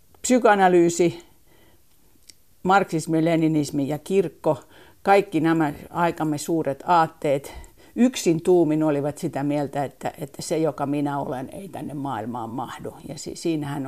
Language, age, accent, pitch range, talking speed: Finnish, 50-69, native, 135-160 Hz, 120 wpm